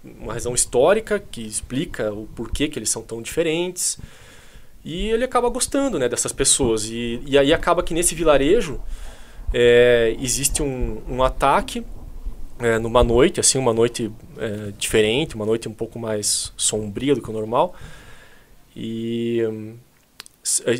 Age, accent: 20-39, Brazilian